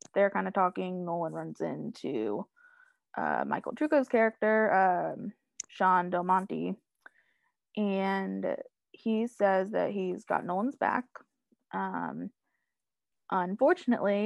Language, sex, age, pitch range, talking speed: English, female, 20-39, 185-225 Hz, 105 wpm